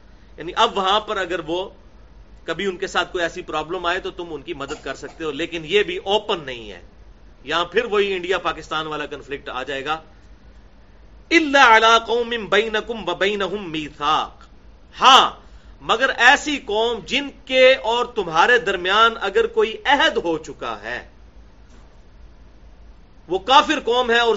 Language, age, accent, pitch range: English, 40-59, Indian, 180-265 Hz